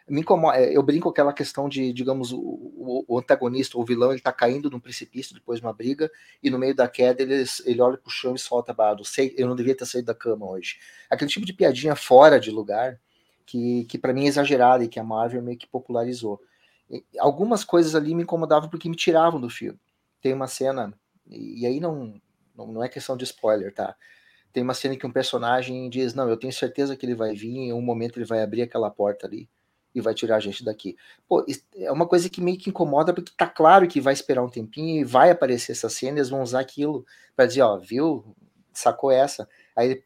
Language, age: Portuguese, 30-49